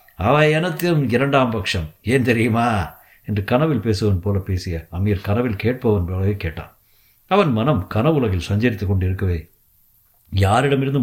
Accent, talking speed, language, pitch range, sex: native, 115 wpm, Tamil, 105-140 Hz, male